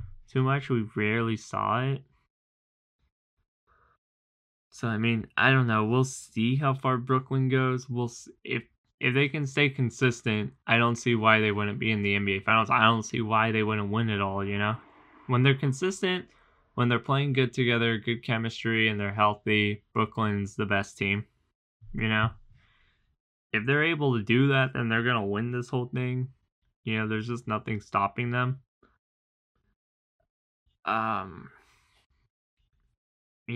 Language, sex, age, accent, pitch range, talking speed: English, male, 10-29, American, 105-125 Hz, 155 wpm